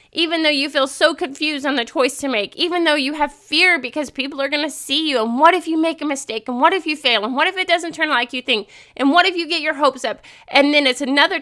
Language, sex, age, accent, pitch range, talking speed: English, female, 30-49, American, 235-330 Hz, 295 wpm